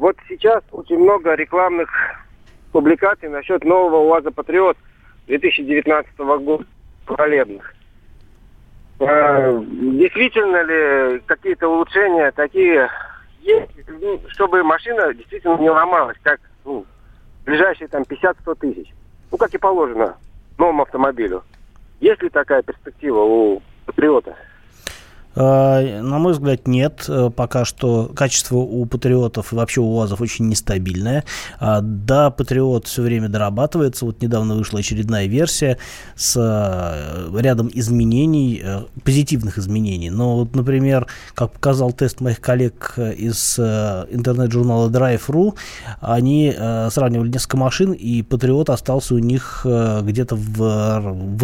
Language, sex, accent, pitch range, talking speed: Russian, male, native, 115-150 Hz, 110 wpm